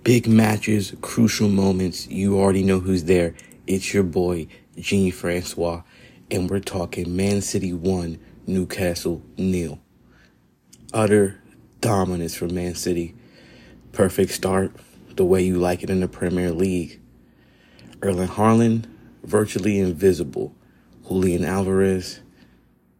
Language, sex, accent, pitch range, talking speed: English, male, American, 85-100 Hz, 115 wpm